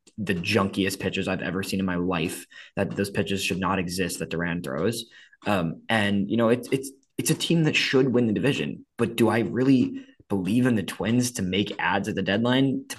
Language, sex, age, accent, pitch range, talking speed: English, male, 20-39, American, 100-125 Hz, 215 wpm